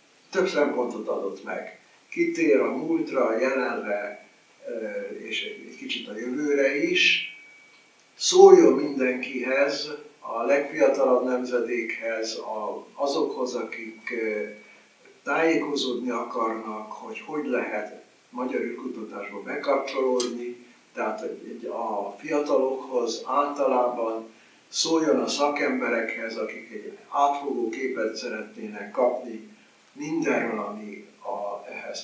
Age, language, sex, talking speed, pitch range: 60-79, Hungarian, male, 90 wpm, 120-150 Hz